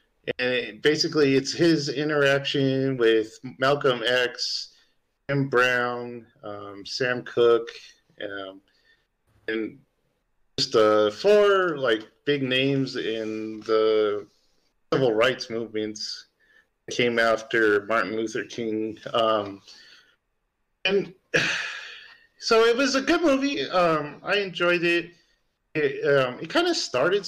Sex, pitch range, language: male, 110-165 Hz, English